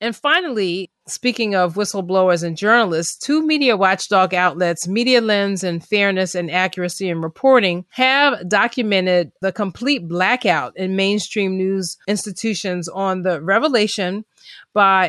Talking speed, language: 125 wpm, English